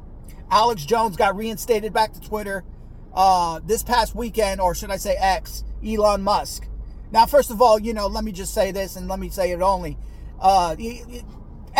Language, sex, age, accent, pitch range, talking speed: English, male, 30-49, American, 185-245 Hz, 190 wpm